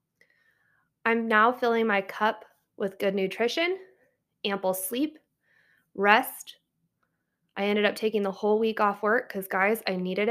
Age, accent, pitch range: 20-39, American, 195-235 Hz